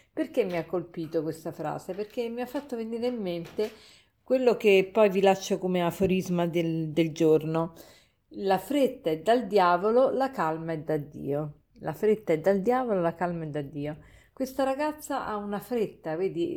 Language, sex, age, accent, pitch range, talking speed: Italian, female, 50-69, native, 165-215 Hz, 180 wpm